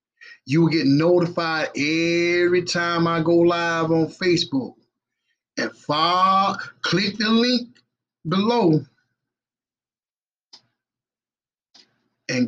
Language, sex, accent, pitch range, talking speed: English, male, American, 140-195 Hz, 80 wpm